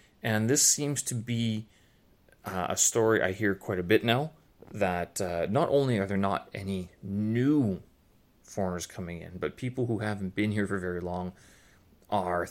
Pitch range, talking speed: 95-120 Hz, 175 wpm